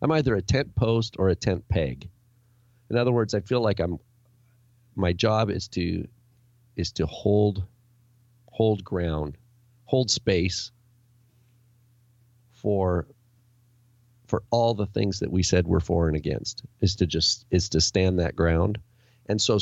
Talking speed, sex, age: 150 wpm, male, 40-59